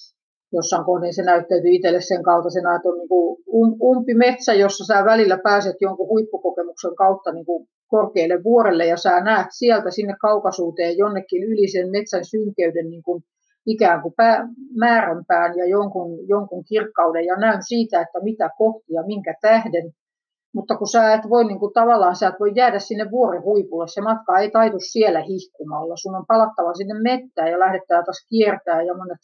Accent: native